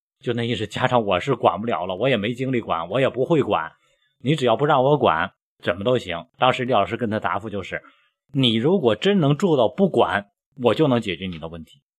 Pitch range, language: 95-125 Hz, Chinese